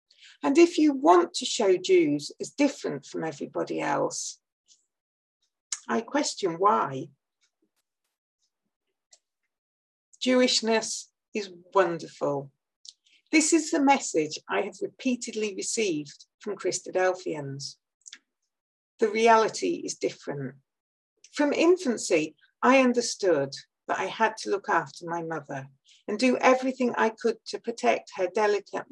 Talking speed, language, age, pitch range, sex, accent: 110 wpm, English, 60-79, 175-255 Hz, female, British